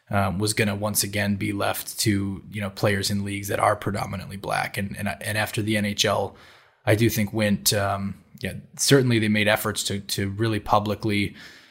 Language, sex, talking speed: English, male, 190 wpm